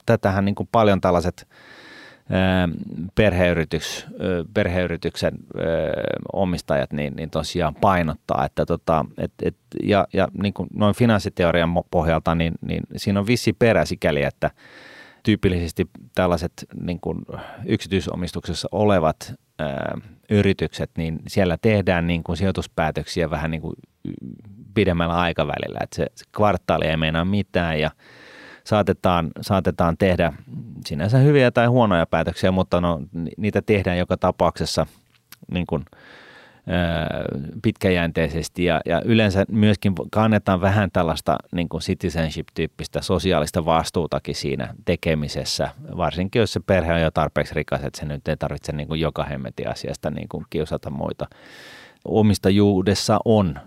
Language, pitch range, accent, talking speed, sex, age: Finnish, 80-95 Hz, native, 125 wpm, male, 30-49